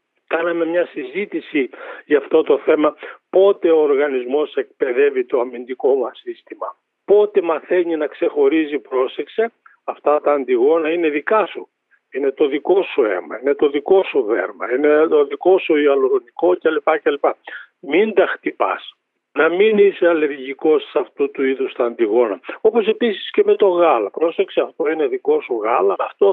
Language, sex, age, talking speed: Greek, male, 50-69, 155 wpm